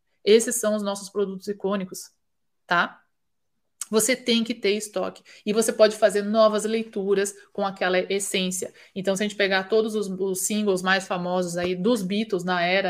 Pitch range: 185-225 Hz